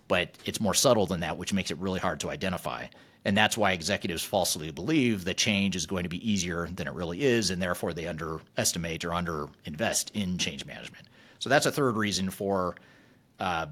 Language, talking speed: English, 200 wpm